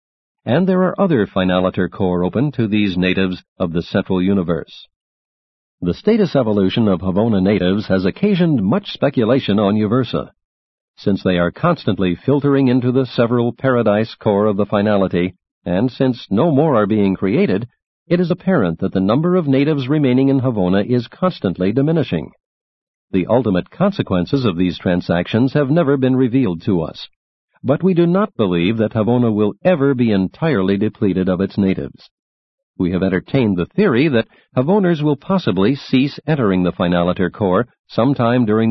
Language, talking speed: English, 160 wpm